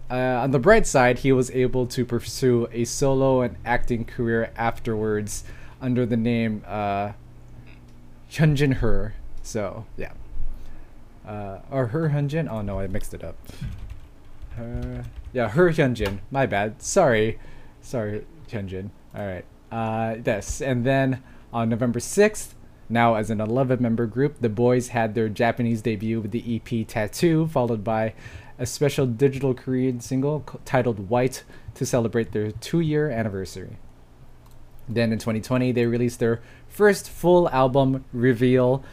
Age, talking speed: 20-39, 140 wpm